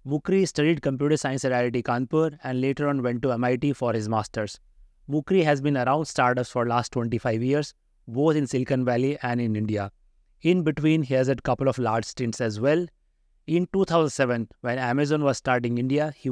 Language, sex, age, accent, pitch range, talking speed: English, male, 30-49, Indian, 120-150 Hz, 195 wpm